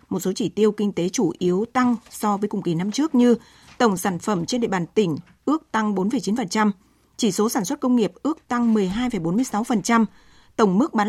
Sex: female